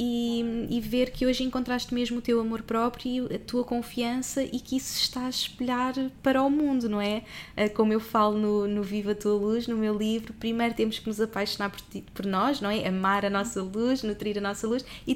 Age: 20-39